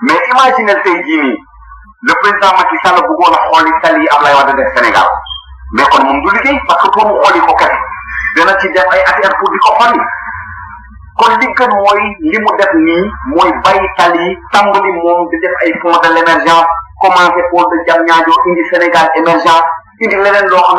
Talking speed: 50 wpm